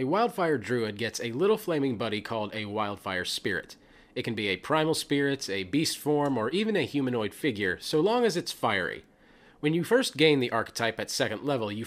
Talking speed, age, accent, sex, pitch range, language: 205 wpm, 30-49, American, male, 110-150 Hz, English